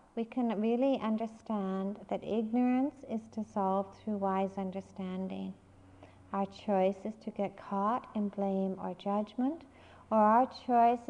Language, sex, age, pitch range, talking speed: English, female, 60-79, 195-235 Hz, 130 wpm